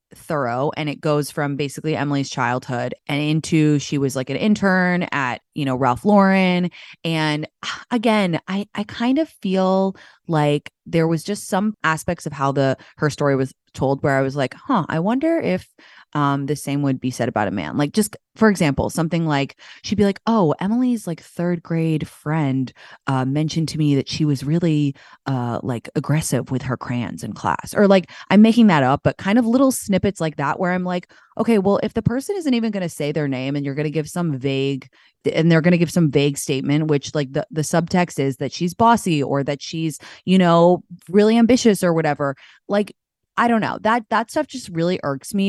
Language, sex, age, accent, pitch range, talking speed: English, female, 20-39, American, 140-190 Hz, 210 wpm